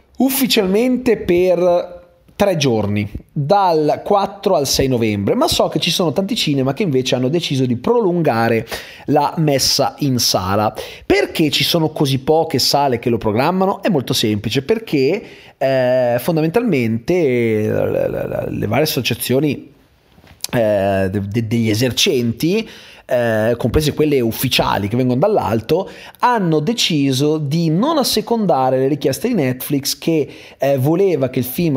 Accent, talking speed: native, 135 wpm